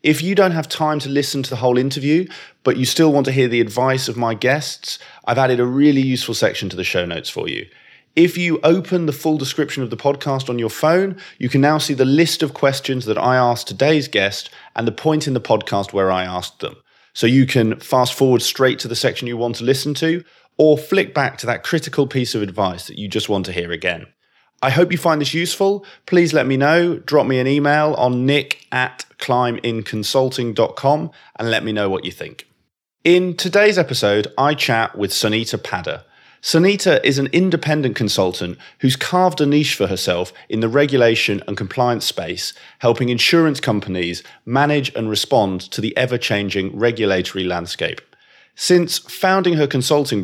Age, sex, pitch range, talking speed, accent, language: 30-49, male, 115-150 Hz, 195 wpm, British, English